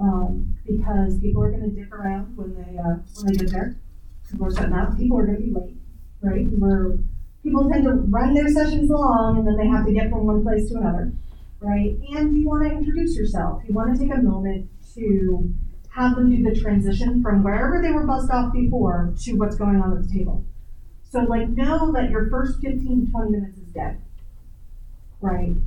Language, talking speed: English, 215 wpm